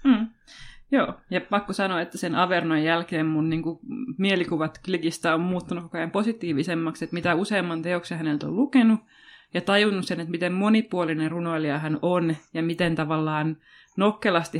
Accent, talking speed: native, 155 wpm